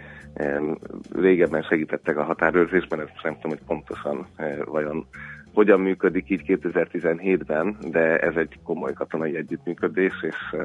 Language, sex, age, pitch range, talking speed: Hungarian, male, 30-49, 75-90 Hz, 120 wpm